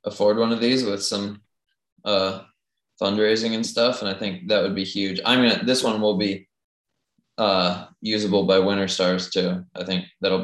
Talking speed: 185 wpm